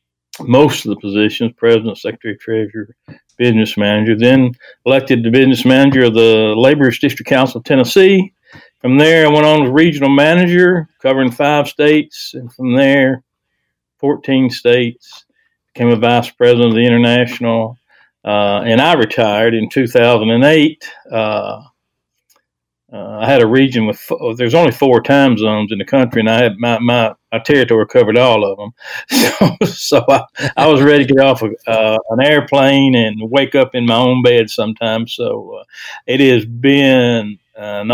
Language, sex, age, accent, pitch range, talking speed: English, male, 60-79, American, 110-140 Hz, 160 wpm